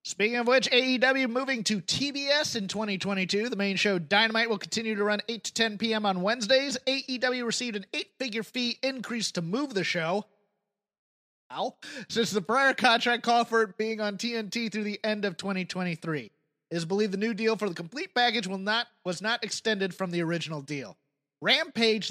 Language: English